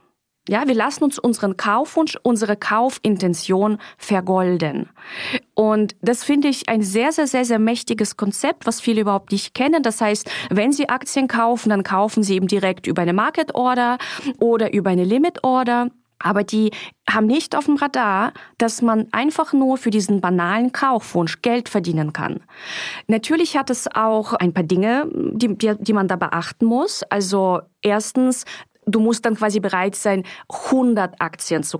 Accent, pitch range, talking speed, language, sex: German, 185-240 Hz, 165 wpm, German, female